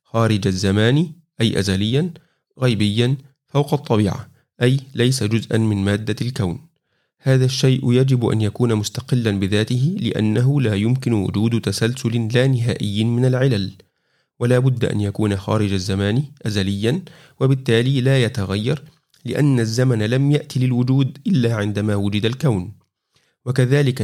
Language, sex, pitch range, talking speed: Arabic, male, 105-130 Hz, 120 wpm